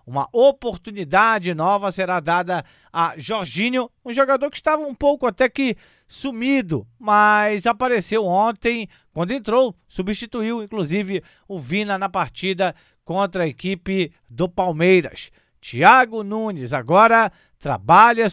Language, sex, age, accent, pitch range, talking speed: Portuguese, male, 50-69, Brazilian, 180-225 Hz, 120 wpm